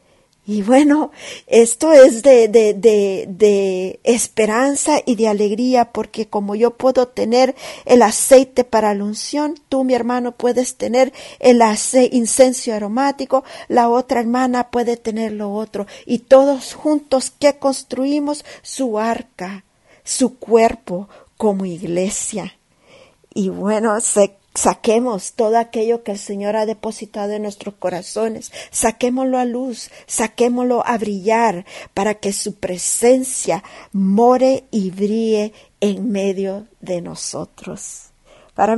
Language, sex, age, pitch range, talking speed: English, female, 40-59, 205-255 Hz, 120 wpm